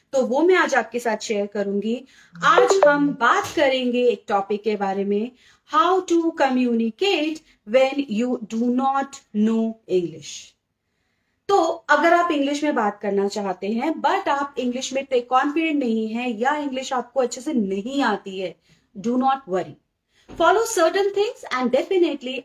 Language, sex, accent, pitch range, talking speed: English, female, Indian, 220-300 Hz, 160 wpm